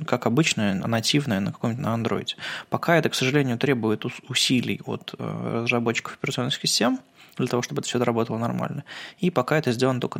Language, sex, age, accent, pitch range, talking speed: Russian, male, 20-39, native, 115-145 Hz, 170 wpm